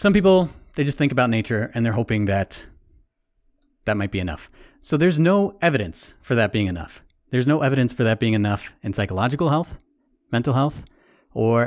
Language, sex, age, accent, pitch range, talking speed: English, male, 30-49, American, 95-135 Hz, 185 wpm